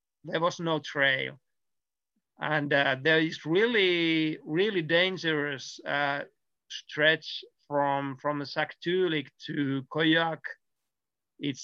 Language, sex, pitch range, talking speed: English, male, 145-170 Hz, 100 wpm